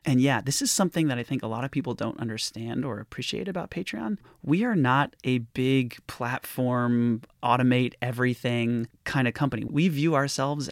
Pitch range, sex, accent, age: 115-140 Hz, male, American, 30-49